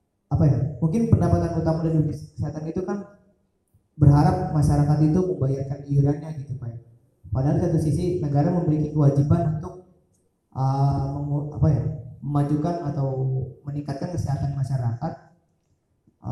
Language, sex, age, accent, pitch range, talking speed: Indonesian, male, 20-39, native, 130-155 Hz, 120 wpm